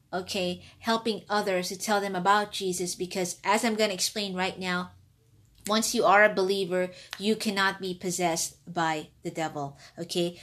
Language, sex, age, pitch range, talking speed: English, female, 20-39, 180-235 Hz, 165 wpm